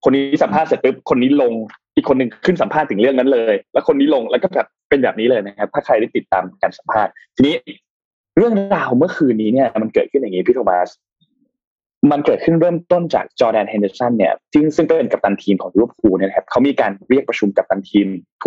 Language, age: Thai, 20-39